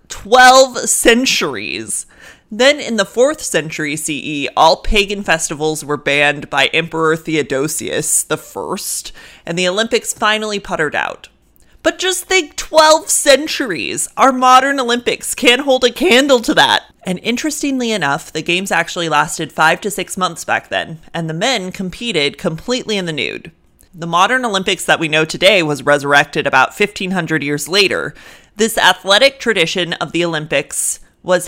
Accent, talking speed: American, 145 wpm